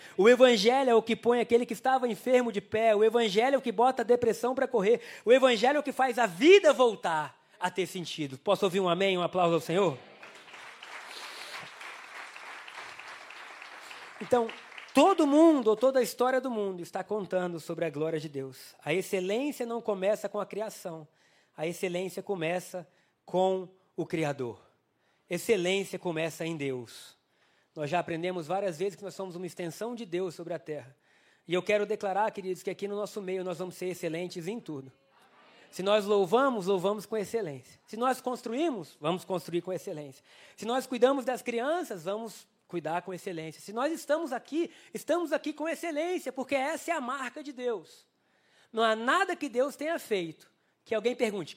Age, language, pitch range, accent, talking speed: 20-39, Portuguese, 180-250 Hz, Brazilian, 180 wpm